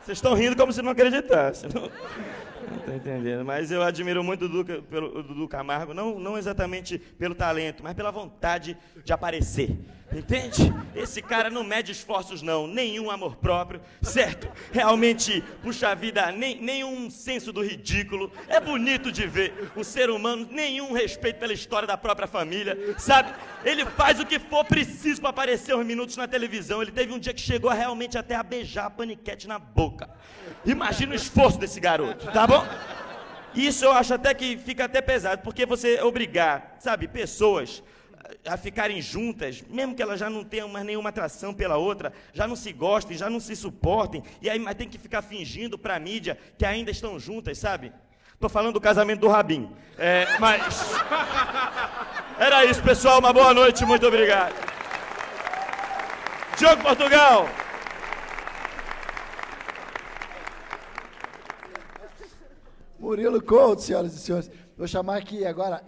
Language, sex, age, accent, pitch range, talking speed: Portuguese, male, 30-49, Brazilian, 195-250 Hz, 155 wpm